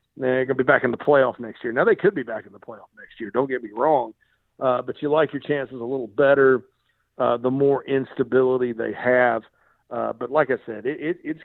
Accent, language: American, English